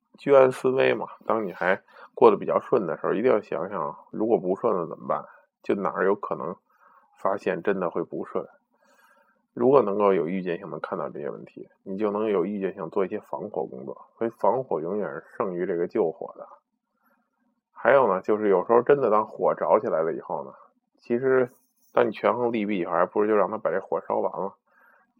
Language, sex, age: Chinese, male, 20-39